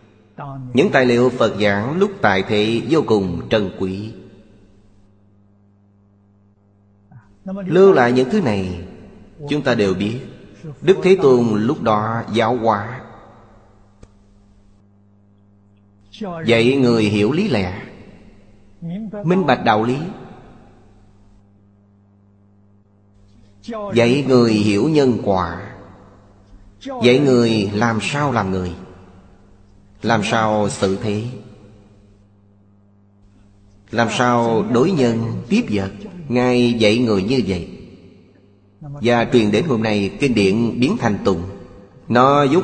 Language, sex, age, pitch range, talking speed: Vietnamese, male, 30-49, 100-120 Hz, 105 wpm